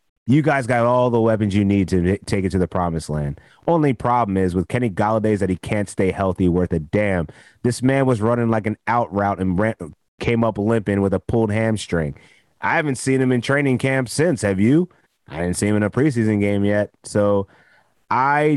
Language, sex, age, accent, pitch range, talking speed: English, male, 30-49, American, 100-120 Hz, 215 wpm